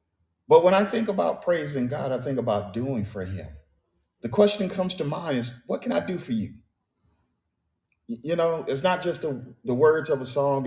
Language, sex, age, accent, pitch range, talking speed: English, male, 40-59, American, 95-140 Hz, 200 wpm